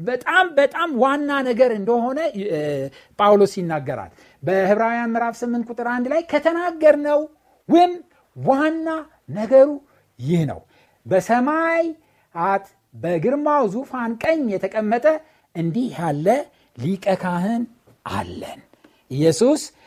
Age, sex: 60-79, male